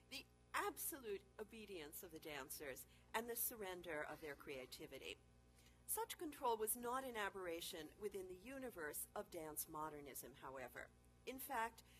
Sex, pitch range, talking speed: female, 165-245 Hz, 130 wpm